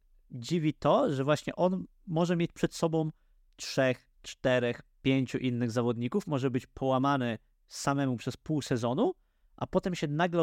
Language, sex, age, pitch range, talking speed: Polish, male, 30-49, 125-160 Hz, 145 wpm